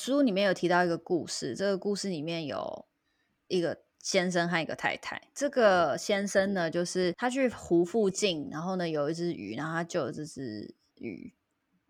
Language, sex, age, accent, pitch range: Chinese, female, 20-39, native, 180-260 Hz